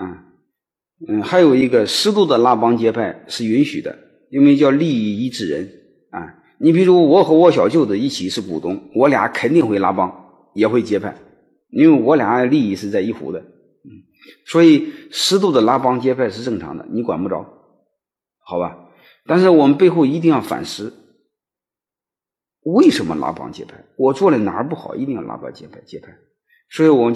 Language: Chinese